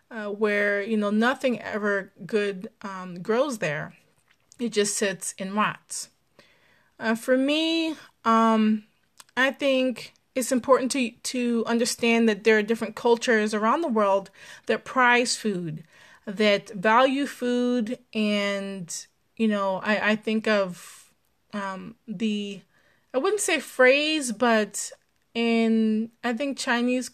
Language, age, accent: English, 20-39, American